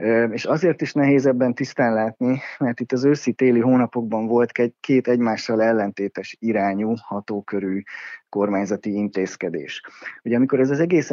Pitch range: 100-125 Hz